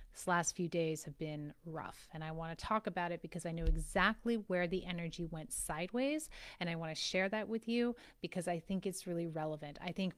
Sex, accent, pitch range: female, American, 170-205 Hz